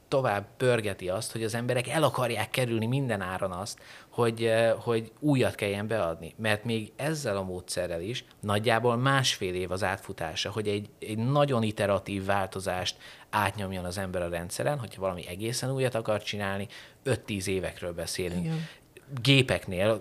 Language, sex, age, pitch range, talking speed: Hungarian, male, 30-49, 95-115 Hz, 145 wpm